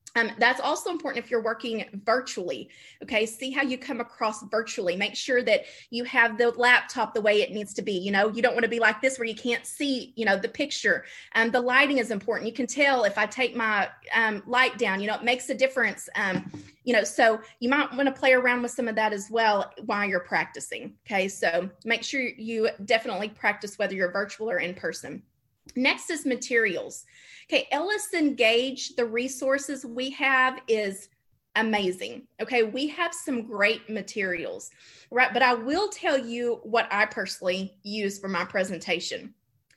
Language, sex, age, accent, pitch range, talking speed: English, female, 20-39, American, 215-265 Hz, 195 wpm